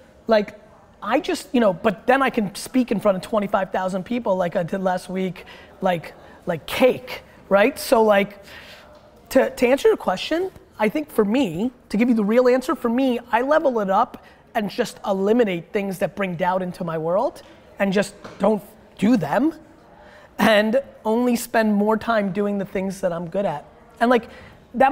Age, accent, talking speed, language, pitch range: 20-39, American, 190 wpm, English, 195-255 Hz